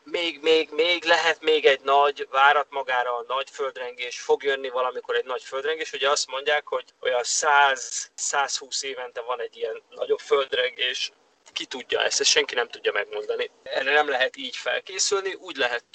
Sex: male